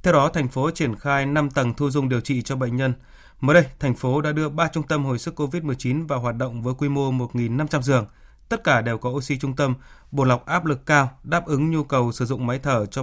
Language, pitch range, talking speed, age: Vietnamese, 125-150 Hz, 260 wpm, 20-39